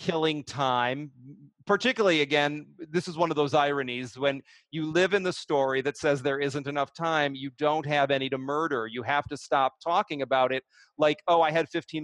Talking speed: 200 wpm